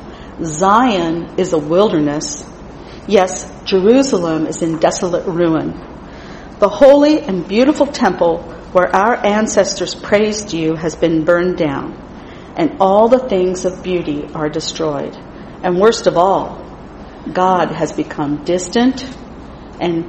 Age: 40-59